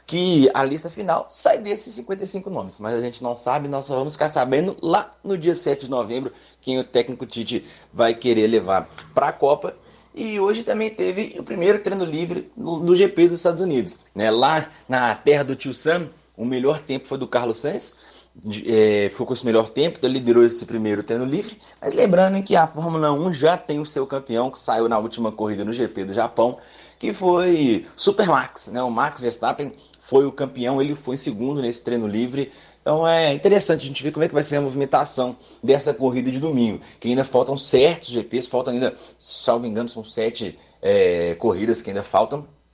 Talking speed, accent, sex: 205 wpm, Brazilian, male